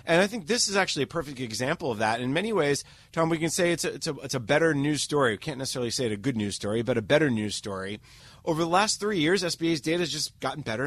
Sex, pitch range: male, 130-170 Hz